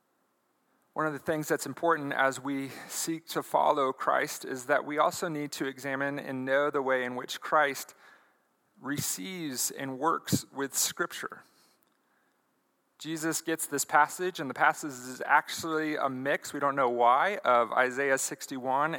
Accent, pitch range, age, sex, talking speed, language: American, 135-170 Hz, 40-59, male, 155 wpm, English